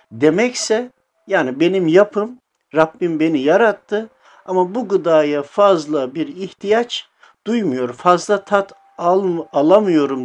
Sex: male